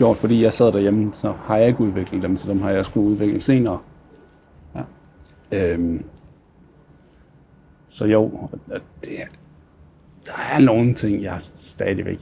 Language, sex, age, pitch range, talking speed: Danish, male, 60-79, 95-125 Hz, 125 wpm